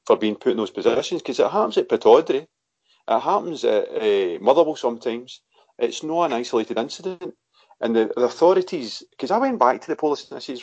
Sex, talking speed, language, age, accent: male, 205 wpm, English, 40-59, British